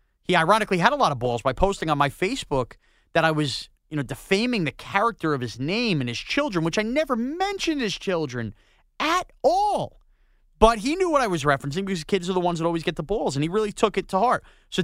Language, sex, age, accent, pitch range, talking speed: English, male, 30-49, American, 145-210 Hz, 240 wpm